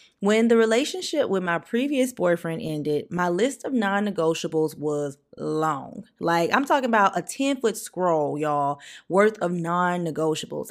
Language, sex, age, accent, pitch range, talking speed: English, female, 20-39, American, 160-220 Hz, 140 wpm